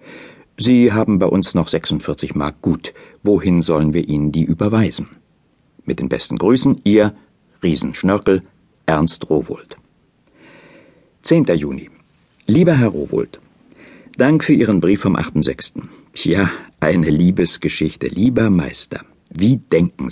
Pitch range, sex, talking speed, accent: 80-115 Hz, male, 120 wpm, German